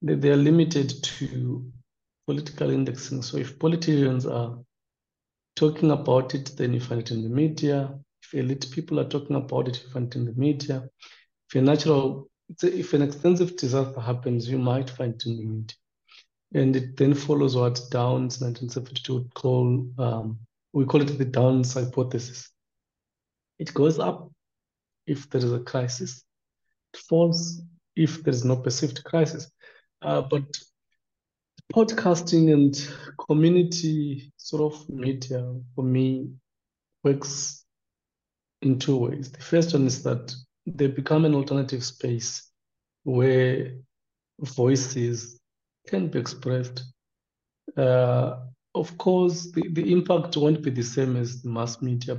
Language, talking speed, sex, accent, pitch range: English, 140 wpm, male, South African, 125-150 Hz